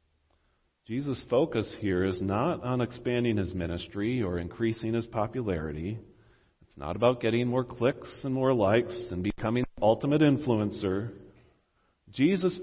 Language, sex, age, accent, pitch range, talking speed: English, male, 40-59, American, 100-140 Hz, 135 wpm